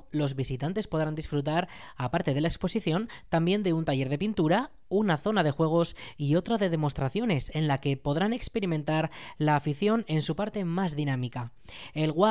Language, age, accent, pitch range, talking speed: Spanish, 20-39, Spanish, 140-180 Hz, 170 wpm